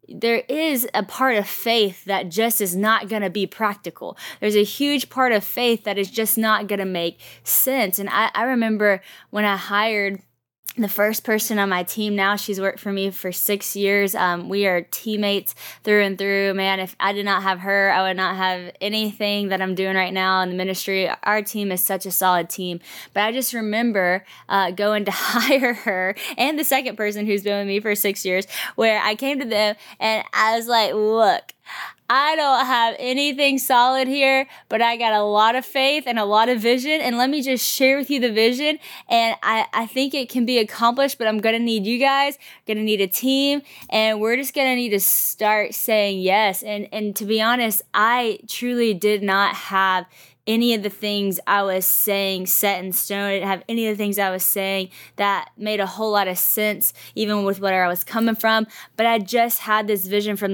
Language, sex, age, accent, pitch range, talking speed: English, female, 20-39, American, 195-230 Hz, 220 wpm